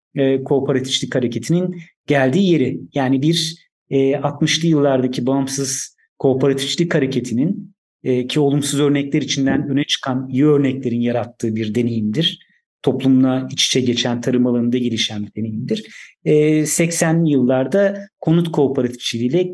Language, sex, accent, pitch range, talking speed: Turkish, male, native, 130-165 Hz, 110 wpm